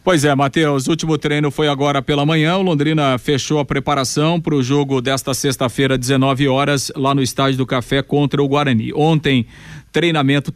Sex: male